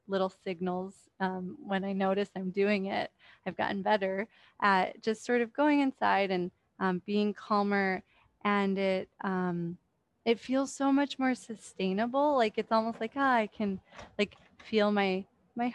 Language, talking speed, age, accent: English, 160 wpm, 20-39, American